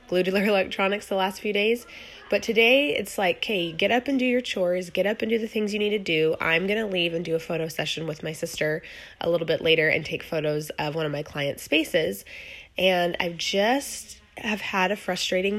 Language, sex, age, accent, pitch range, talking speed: English, female, 20-39, American, 165-205 Hz, 235 wpm